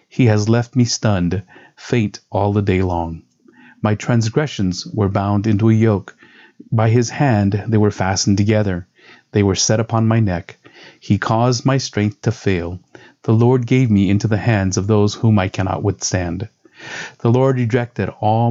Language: English